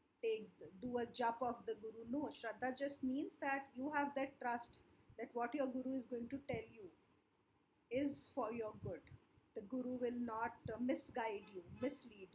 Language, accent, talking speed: English, Indian, 170 wpm